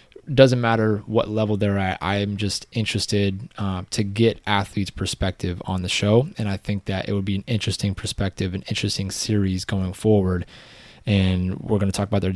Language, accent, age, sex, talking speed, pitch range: English, American, 20-39, male, 195 wpm, 95-110 Hz